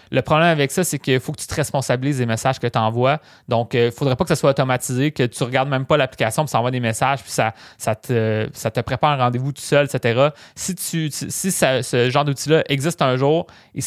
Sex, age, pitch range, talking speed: male, 20-39, 125-150 Hz, 250 wpm